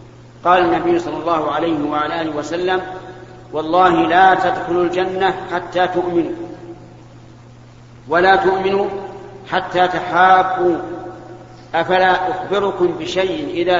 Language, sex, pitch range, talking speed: Arabic, male, 145-185 Hz, 95 wpm